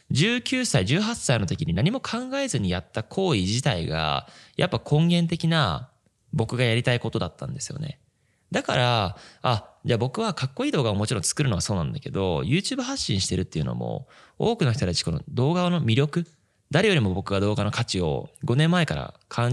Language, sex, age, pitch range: Japanese, male, 20-39, 105-160 Hz